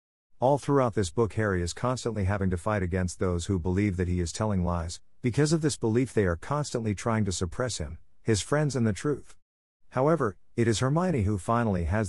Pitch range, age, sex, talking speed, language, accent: 90-115 Hz, 50-69, male, 210 wpm, English, American